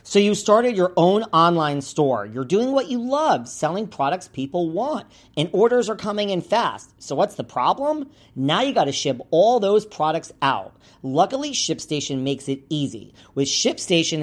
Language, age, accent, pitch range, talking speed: English, 40-59, American, 135-190 Hz, 175 wpm